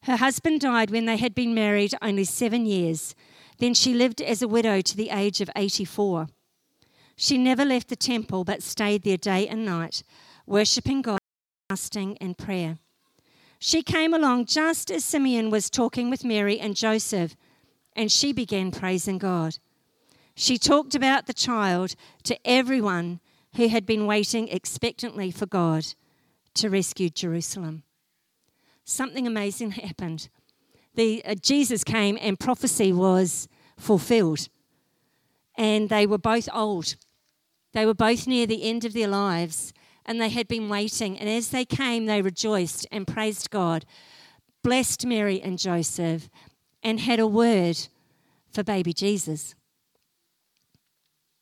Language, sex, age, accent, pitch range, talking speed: English, female, 50-69, Australian, 185-235 Hz, 140 wpm